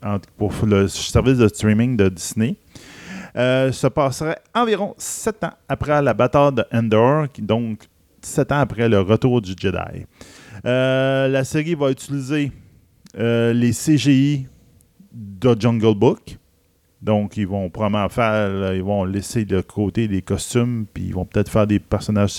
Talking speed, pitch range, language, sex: 150 wpm, 100-135 Hz, French, male